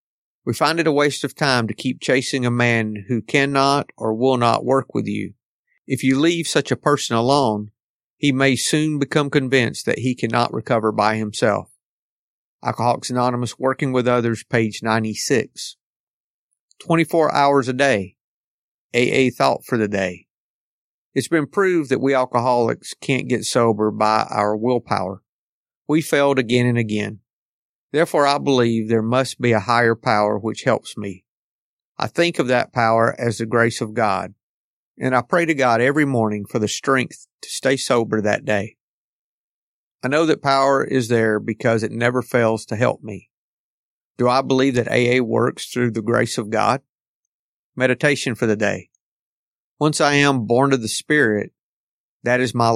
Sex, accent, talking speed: male, American, 165 wpm